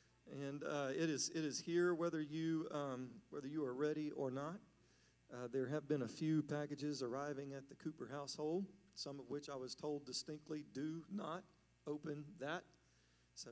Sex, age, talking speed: male, 40-59, 180 wpm